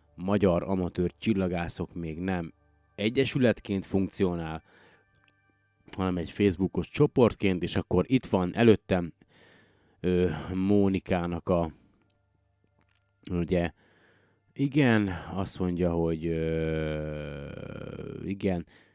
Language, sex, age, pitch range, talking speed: Hungarian, male, 30-49, 85-100 Hz, 75 wpm